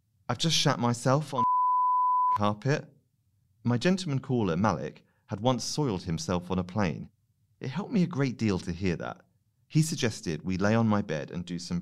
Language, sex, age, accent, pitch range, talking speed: English, male, 40-59, British, 90-120 Hz, 190 wpm